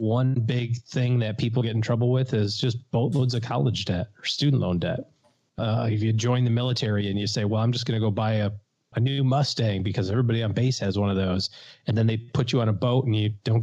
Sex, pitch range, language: male, 105-130 Hz, English